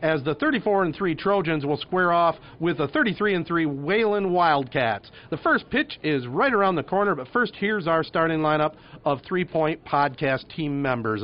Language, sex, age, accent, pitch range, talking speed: English, male, 40-59, American, 140-190 Hz, 190 wpm